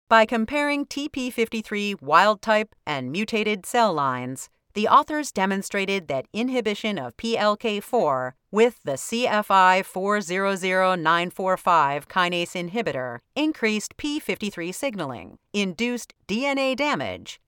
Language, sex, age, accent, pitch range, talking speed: English, female, 40-59, American, 175-240 Hz, 90 wpm